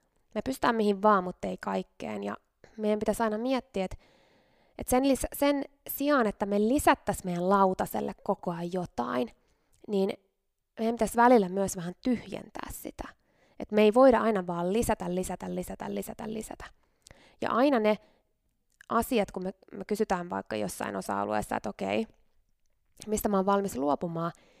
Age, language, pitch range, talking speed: 20-39, Finnish, 180-245 Hz, 140 wpm